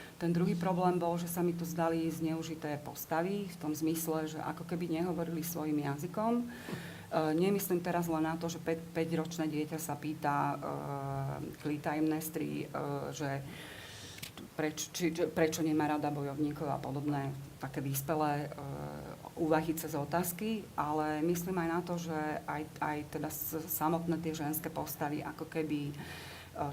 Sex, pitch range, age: female, 150-170 Hz, 40-59